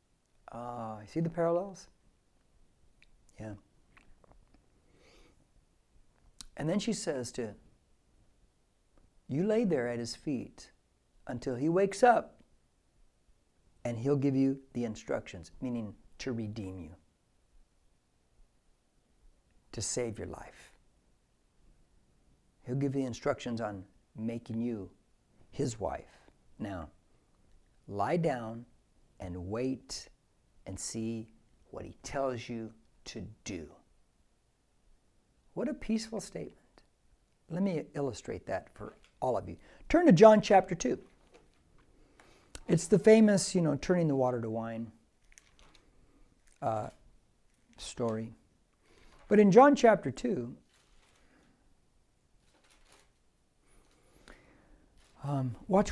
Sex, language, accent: male, English, American